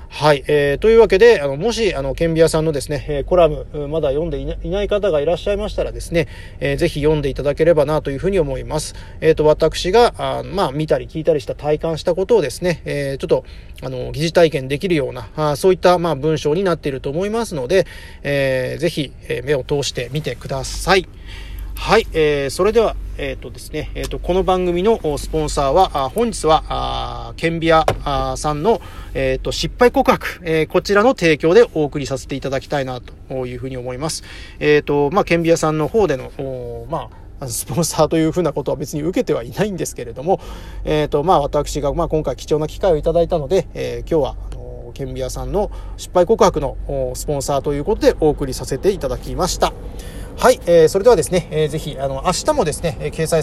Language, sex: Japanese, male